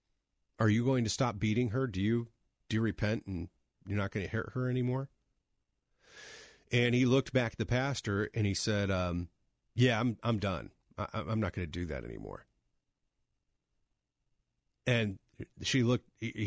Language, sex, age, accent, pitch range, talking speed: English, male, 40-59, American, 90-120 Hz, 170 wpm